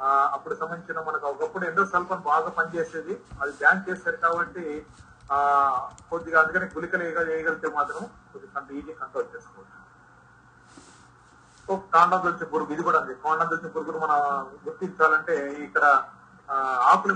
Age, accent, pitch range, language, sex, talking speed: 30-49, native, 150-190 Hz, Telugu, male, 125 wpm